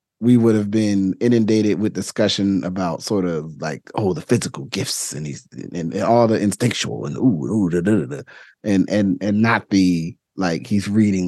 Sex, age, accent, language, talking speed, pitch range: male, 30-49, American, English, 200 wpm, 90-110 Hz